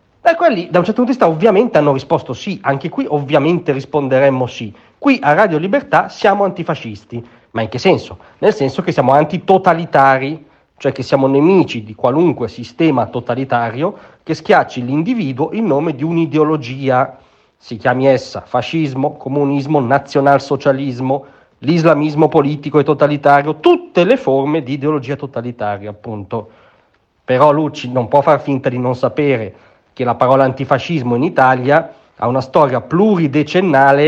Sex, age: male, 40-59